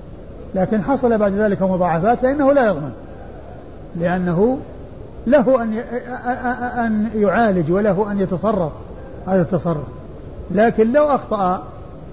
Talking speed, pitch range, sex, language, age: 100 wpm, 185-240 Hz, male, Arabic, 50-69